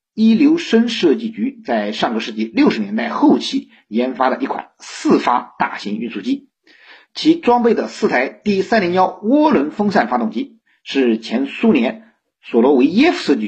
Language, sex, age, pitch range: Chinese, male, 50-69, 180-280 Hz